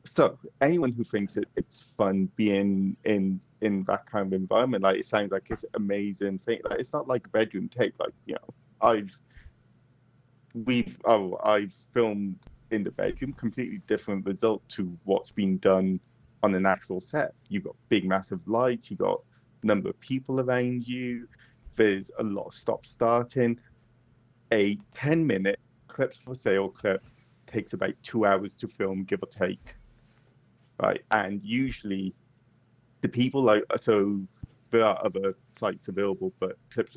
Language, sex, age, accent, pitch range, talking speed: English, male, 30-49, British, 95-120 Hz, 160 wpm